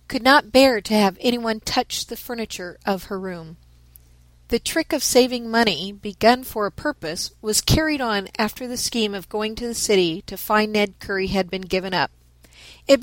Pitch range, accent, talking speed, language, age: 185-245 Hz, American, 190 wpm, English, 40-59